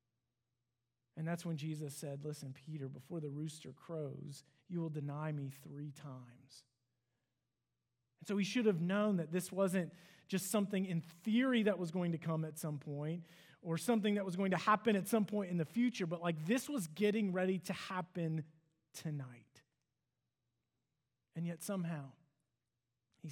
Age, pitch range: 40-59, 140-210 Hz